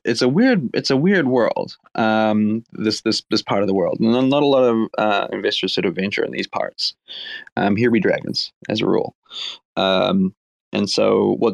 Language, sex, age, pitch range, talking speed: English, male, 30-49, 105-155 Hz, 210 wpm